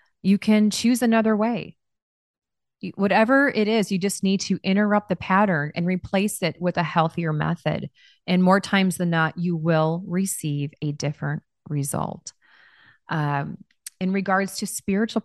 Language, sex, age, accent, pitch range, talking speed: English, female, 20-39, American, 160-205 Hz, 150 wpm